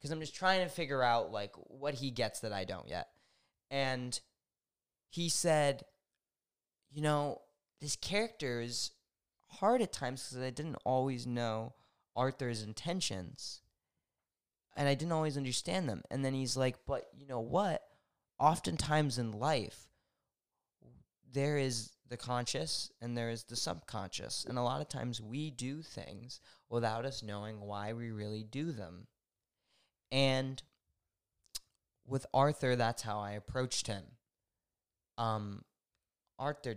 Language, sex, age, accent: English, male, 10-29, American